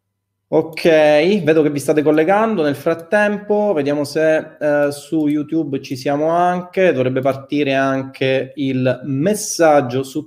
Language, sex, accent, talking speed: Italian, male, native, 130 wpm